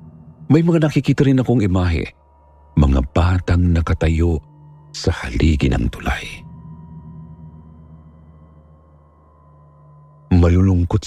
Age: 50-69